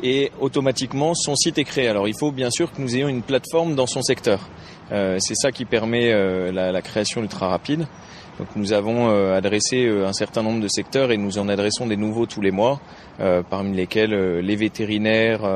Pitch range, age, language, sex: 100-125 Hz, 30-49, French, male